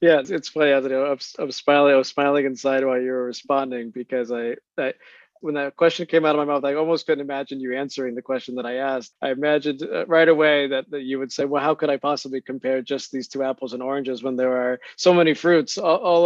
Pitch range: 125-145 Hz